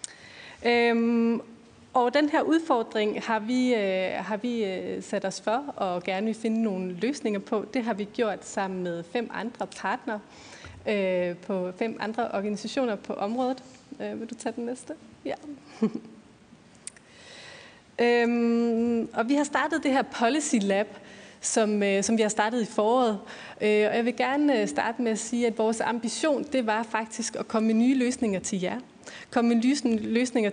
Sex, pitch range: female, 205-240 Hz